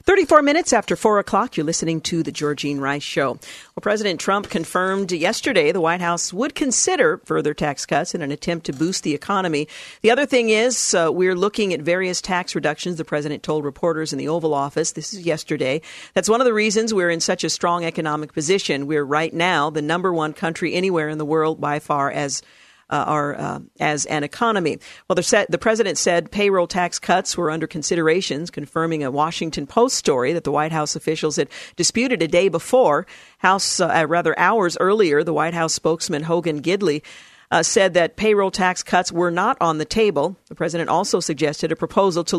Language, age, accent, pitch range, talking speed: English, 50-69, American, 155-185 Hz, 200 wpm